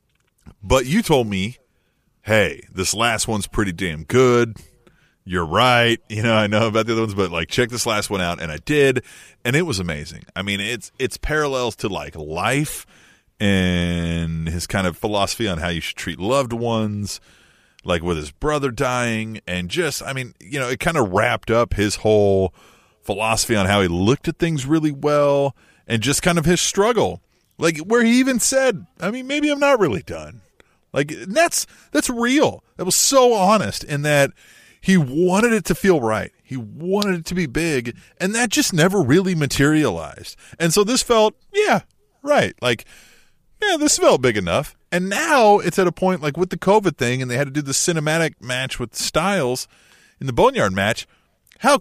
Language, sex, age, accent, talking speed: English, male, 30-49, American, 190 wpm